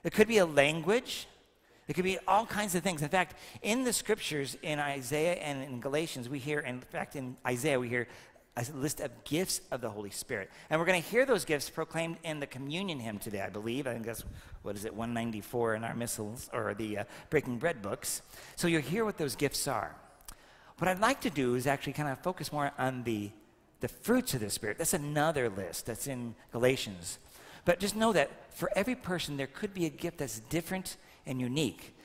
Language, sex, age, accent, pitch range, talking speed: English, male, 50-69, American, 125-170 Hz, 215 wpm